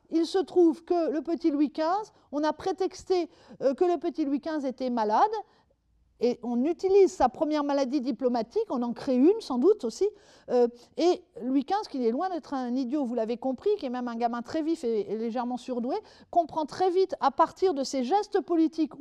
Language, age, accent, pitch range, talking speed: French, 50-69, French, 240-335 Hz, 210 wpm